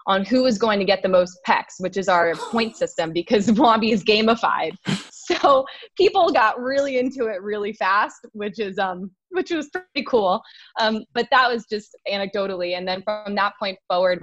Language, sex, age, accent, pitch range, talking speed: English, female, 20-39, American, 175-215 Hz, 190 wpm